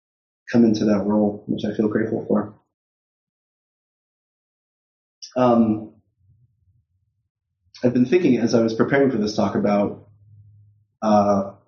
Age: 20-39